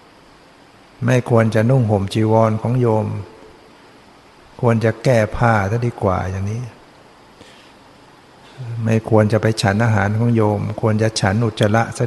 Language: Thai